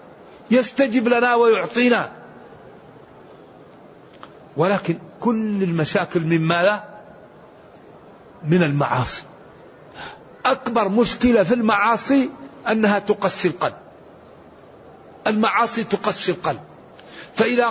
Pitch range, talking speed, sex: 190-230 Hz, 70 wpm, male